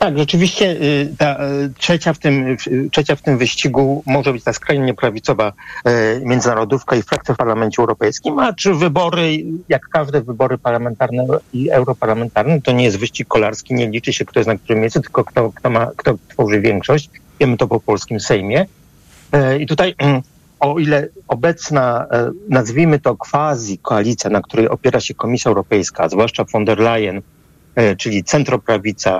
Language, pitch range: Polish, 120-155 Hz